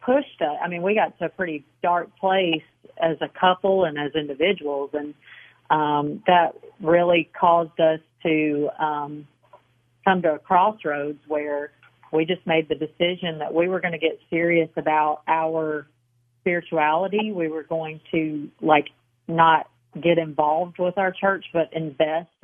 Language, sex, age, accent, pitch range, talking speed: English, female, 40-59, American, 155-180 Hz, 155 wpm